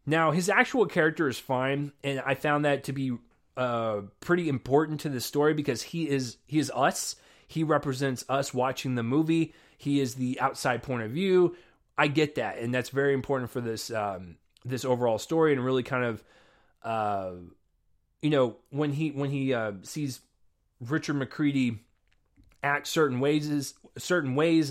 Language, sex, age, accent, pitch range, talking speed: English, male, 20-39, American, 125-155 Hz, 170 wpm